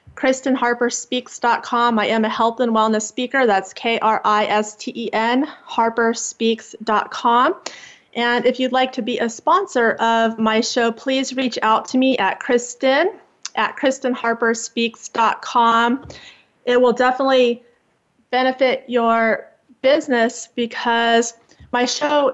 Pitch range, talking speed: 220-250 Hz, 105 wpm